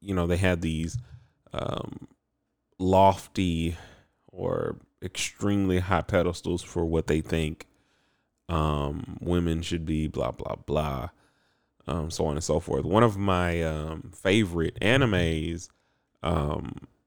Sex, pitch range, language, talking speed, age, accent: male, 85-100 Hz, English, 125 wpm, 30-49, American